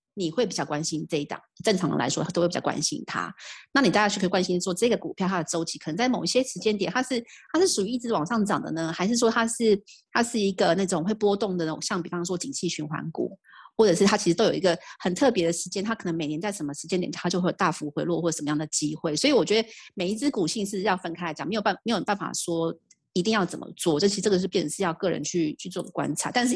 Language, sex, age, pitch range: Chinese, female, 30-49, 165-210 Hz